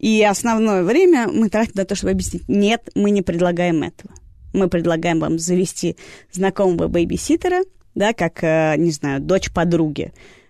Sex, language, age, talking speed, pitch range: female, Russian, 20-39, 150 wpm, 165-205 Hz